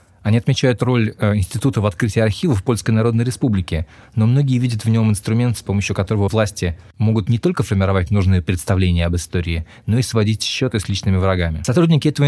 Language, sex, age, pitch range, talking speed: Russian, male, 20-39, 95-120 Hz, 185 wpm